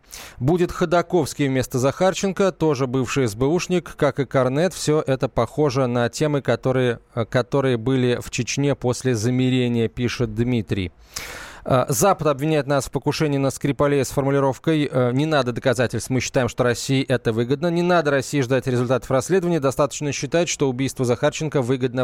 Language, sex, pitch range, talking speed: Russian, male, 115-145 Hz, 145 wpm